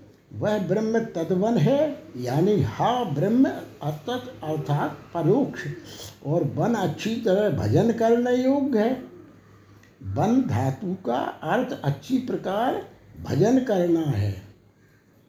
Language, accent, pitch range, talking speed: Hindi, native, 140-215 Hz, 80 wpm